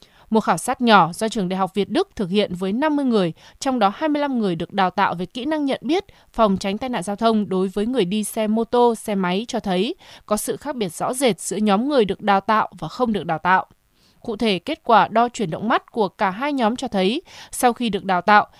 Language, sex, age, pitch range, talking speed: Vietnamese, female, 20-39, 195-245 Hz, 260 wpm